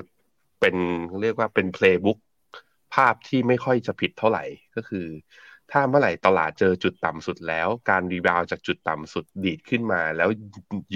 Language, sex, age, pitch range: Thai, male, 20-39, 85-100 Hz